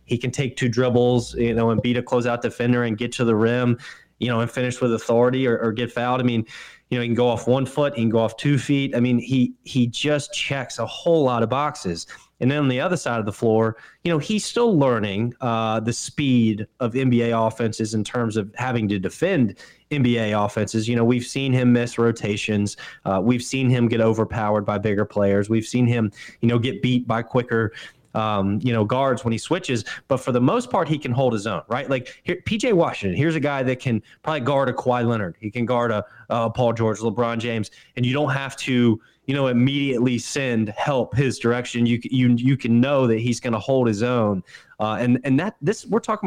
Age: 20-39